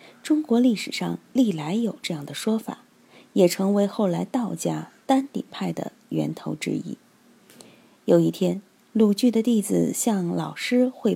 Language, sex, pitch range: Chinese, female, 195-260 Hz